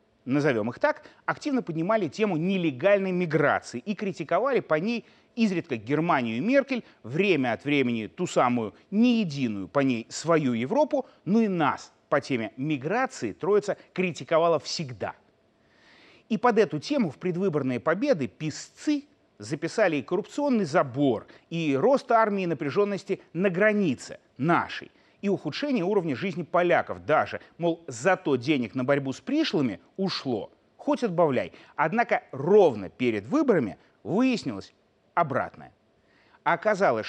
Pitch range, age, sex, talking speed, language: 145-220 Hz, 30-49, male, 130 wpm, Russian